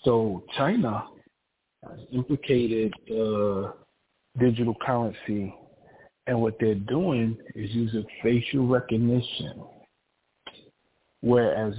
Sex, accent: male, American